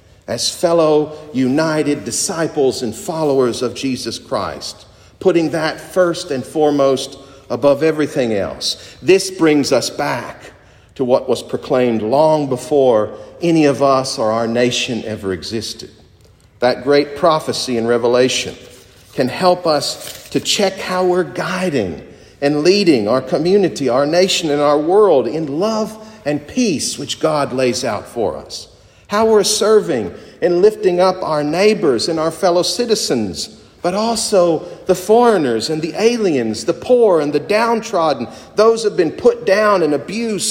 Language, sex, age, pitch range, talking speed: English, male, 50-69, 130-185 Hz, 145 wpm